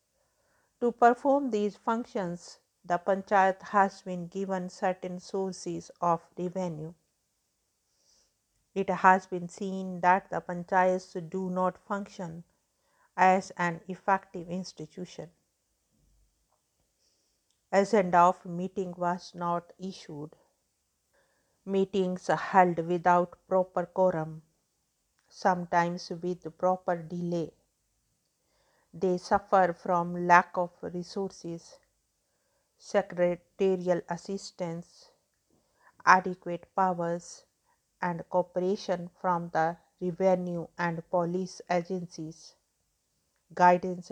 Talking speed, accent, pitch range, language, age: 85 wpm, Indian, 175-195 Hz, English, 50-69